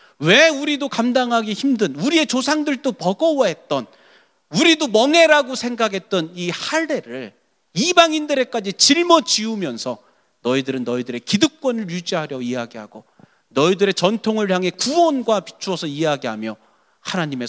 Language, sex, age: Korean, male, 40-59